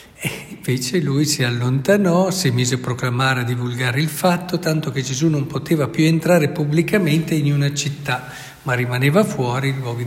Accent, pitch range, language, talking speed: native, 135-175 Hz, Italian, 160 wpm